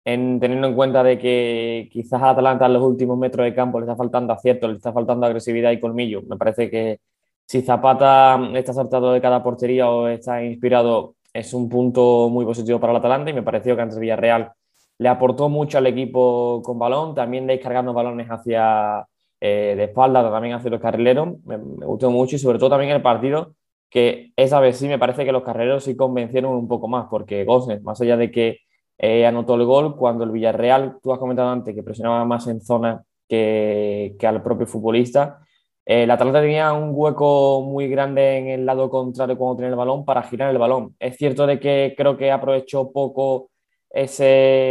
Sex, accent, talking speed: male, Spanish, 200 wpm